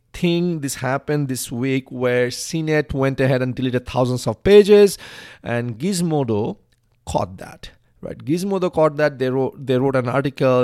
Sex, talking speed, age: male, 160 wpm, 40-59